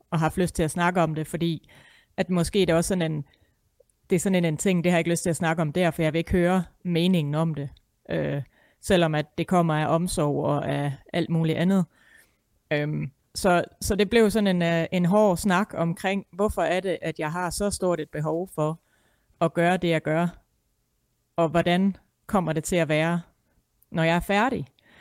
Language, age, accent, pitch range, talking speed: Danish, 30-49, native, 160-185 Hz, 220 wpm